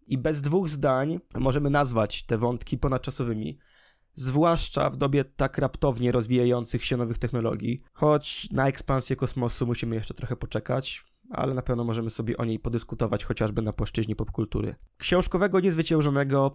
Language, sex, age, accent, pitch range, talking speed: Polish, male, 20-39, native, 120-145 Hz, 145 wpm